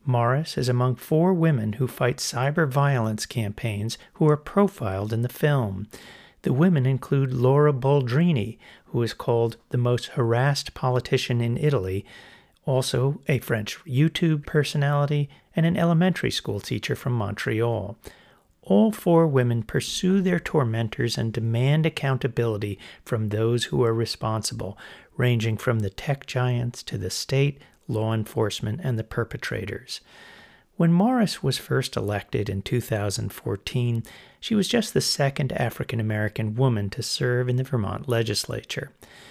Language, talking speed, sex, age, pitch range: English, 135 wpm, male, 40-59, 115-145 Hz